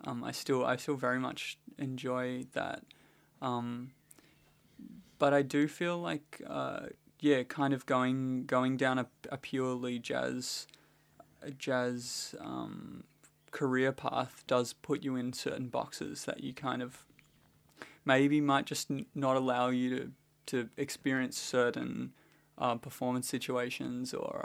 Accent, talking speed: Australian, 135 wpm